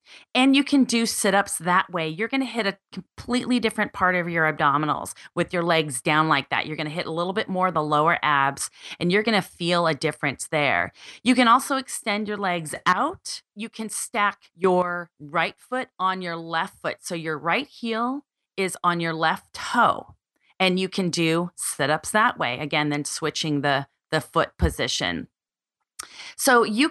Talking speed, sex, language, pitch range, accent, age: 190 wpm, female, English, 165-215 Hz, American, 30-49